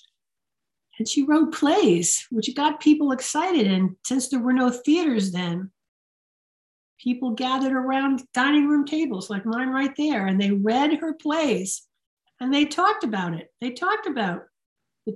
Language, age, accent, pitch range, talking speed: English, 50-69, American, 200-285 Hz, 155 wpm